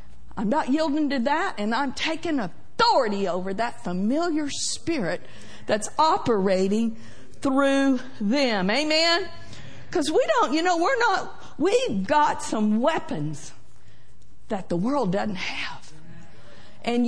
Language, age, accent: English, 50-69, American